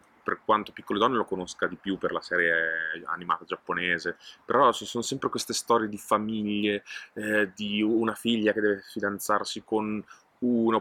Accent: native